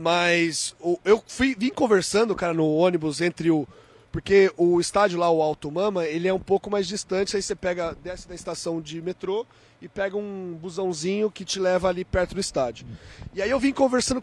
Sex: male